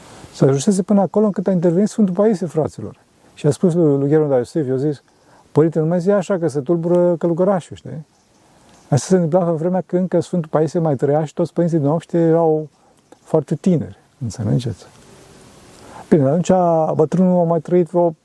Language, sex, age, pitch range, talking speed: Romanian, male, 40-59, 140-180 Hz, 180 wpm